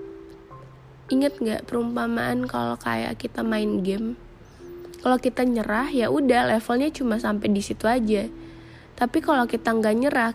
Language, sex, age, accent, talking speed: Indonesian, female, 20-39, native, 135 wpm